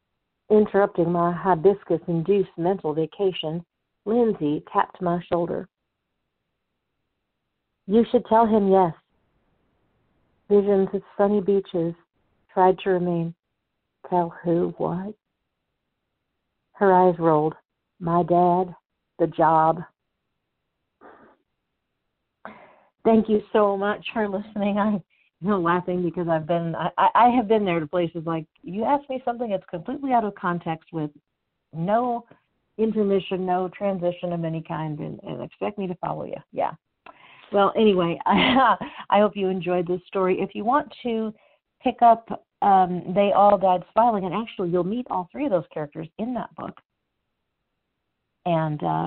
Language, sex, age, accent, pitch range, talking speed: English, female, 50-69, American, 170-210 Hz, 135 wpm